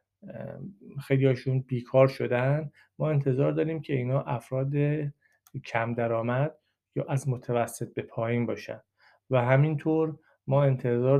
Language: Persian